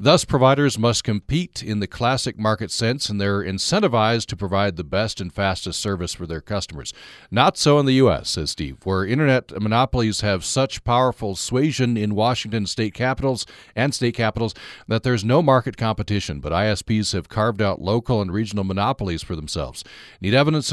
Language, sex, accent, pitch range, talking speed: English, male, American, 95-125 Hz, 175 wpm